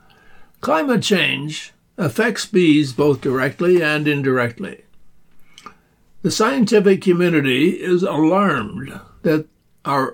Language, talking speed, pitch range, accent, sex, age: English, 90 wpm, 155-195 Hz, American, male, 60-79